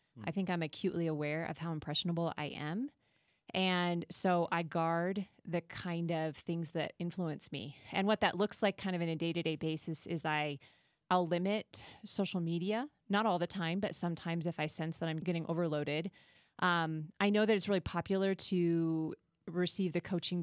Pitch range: 165-195 Hz